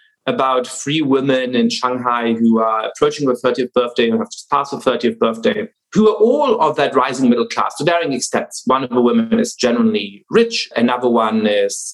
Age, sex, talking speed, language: 30-49, male, 195 wpm, English